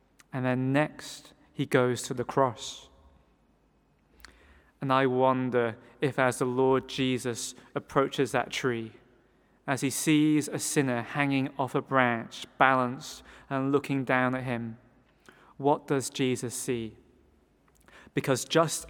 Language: English